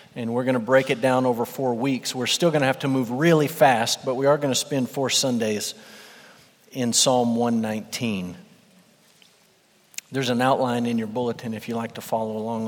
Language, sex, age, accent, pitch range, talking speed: English, male, 40-59, American, 125-150 Hz, 200 wpm